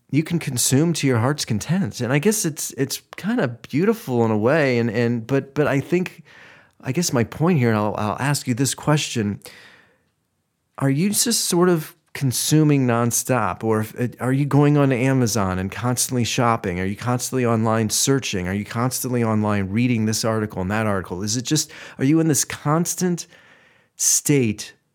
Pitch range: 110-140 Hz